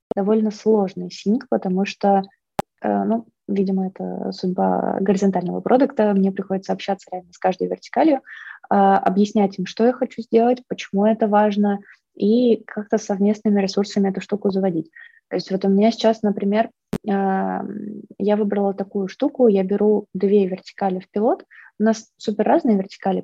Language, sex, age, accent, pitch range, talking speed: Russian, female, 20-39, native, 190-225 Hz, 150 wpm